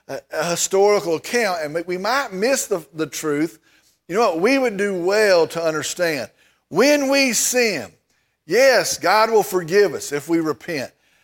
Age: 50-69